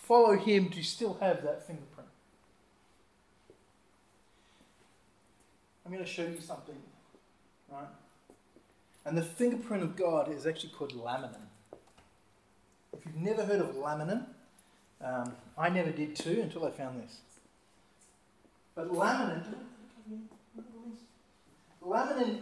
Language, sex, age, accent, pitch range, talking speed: English, male, 30-49, Australian, 165-215 Hz, 110 wpm